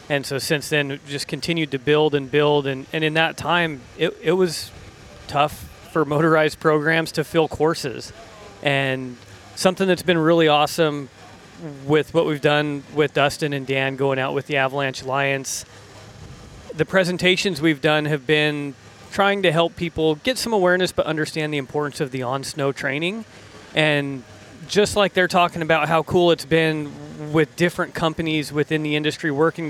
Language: English